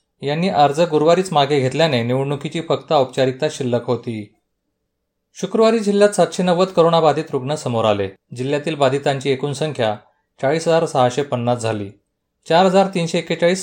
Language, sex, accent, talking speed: Marathi, male, native, 125 wpm